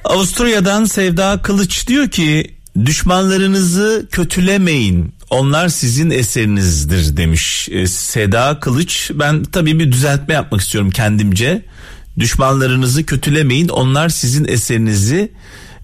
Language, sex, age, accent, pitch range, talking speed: Turkish, male, 40-59, native, 105-165 Hz, 95 wpm